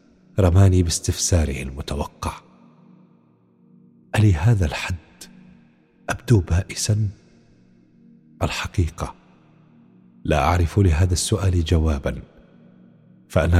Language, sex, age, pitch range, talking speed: Arabic, male, 40-59, 70-95 Hz, 65 wpm